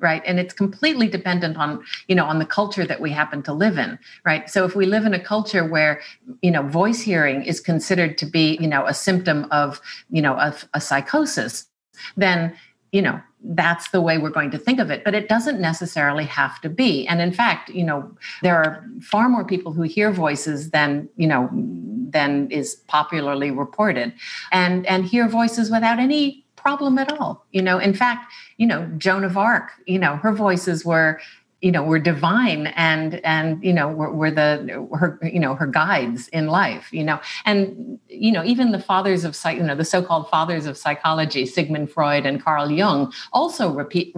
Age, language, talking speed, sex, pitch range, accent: 50-69, English, 200 wpm, female, 155-205 Hz, American